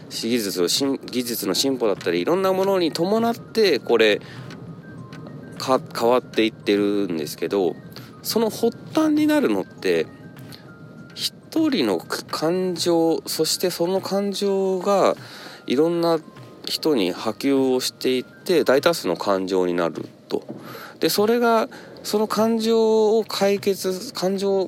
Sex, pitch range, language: male, 120-200 Hz, Japanese